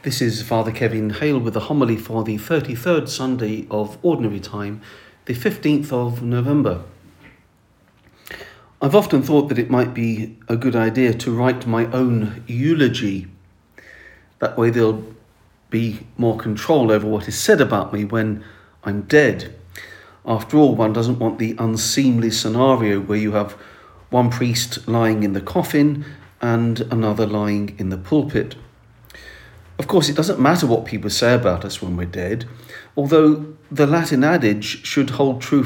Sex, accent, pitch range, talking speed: male, British, 105-130 Hz, 155 wpm